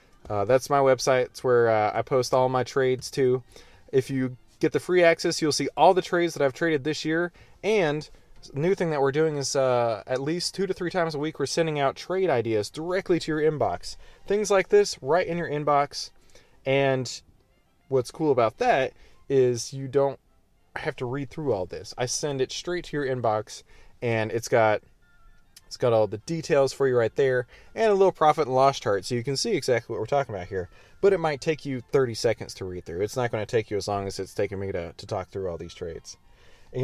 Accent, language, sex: American, English, male